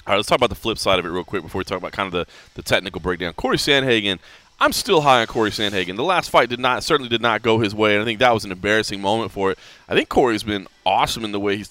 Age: 20-39